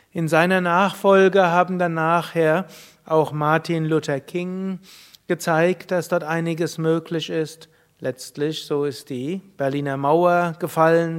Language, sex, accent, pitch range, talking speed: German, male, German, 145-170 Hz, 125 wpm